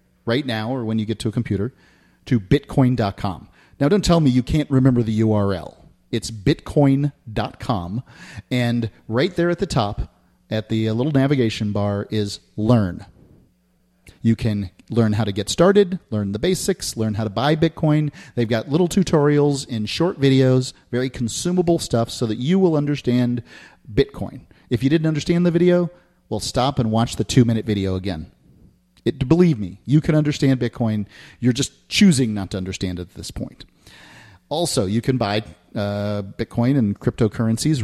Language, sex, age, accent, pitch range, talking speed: English, male, 40-59, American, 100-135 Hz, 165 wpm